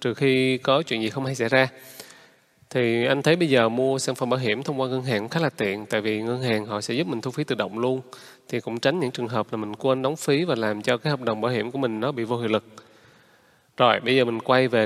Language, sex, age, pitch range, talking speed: Vietnamese, male, 20-39, 115-145 Hz, 290 wpm